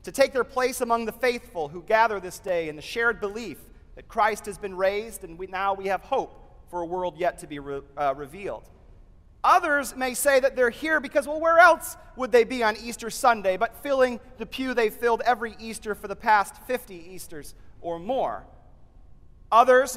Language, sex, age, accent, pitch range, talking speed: English, male, 40-59, American, 180-240 Hz, 195 wpm